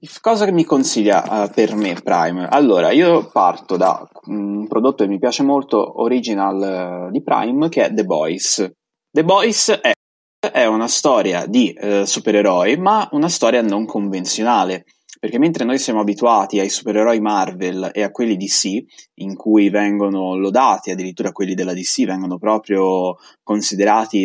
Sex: male